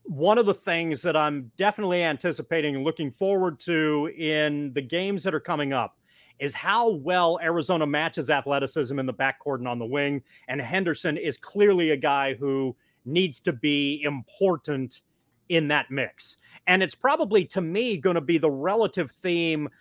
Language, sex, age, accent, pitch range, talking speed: English, male, 30-49, American, 135-175 Hz, 175 wpm